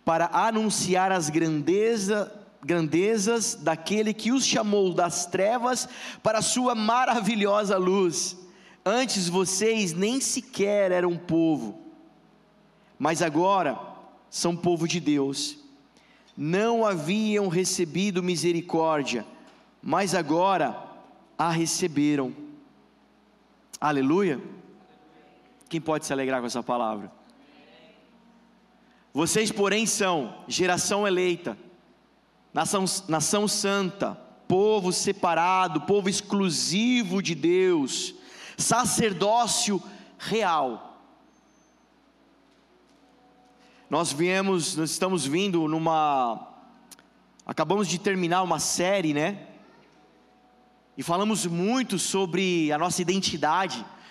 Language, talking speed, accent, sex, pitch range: Portuguese, 90 wpm, Brazilian, male, 170-220 Hz